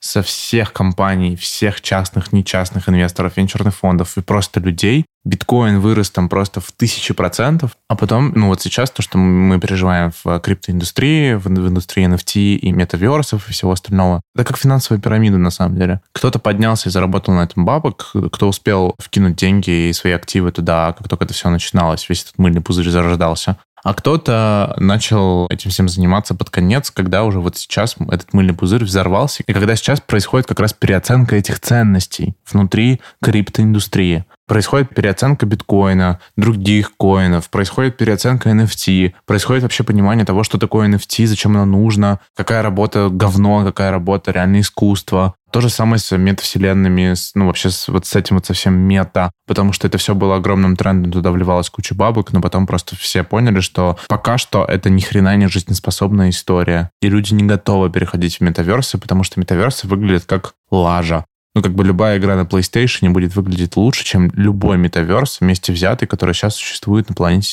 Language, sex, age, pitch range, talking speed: Russian, male, 20-39, 90-110 Hz, 170 wpm